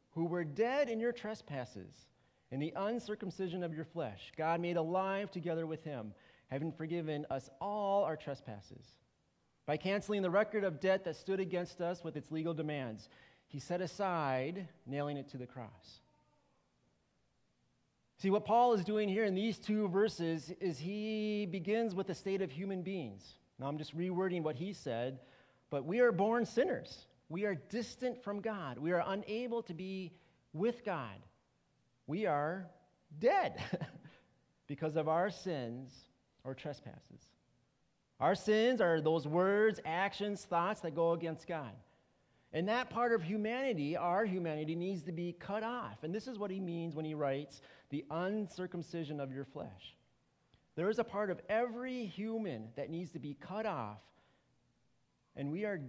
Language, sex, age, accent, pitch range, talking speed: English, male, 30-49, American, 150-205 Hz, 160 wpm